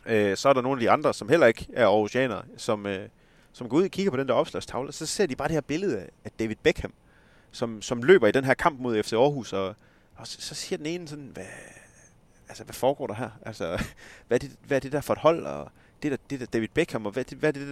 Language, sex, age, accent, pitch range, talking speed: Danish, male, 30-49, native, 105-130 Hz, 270 wpm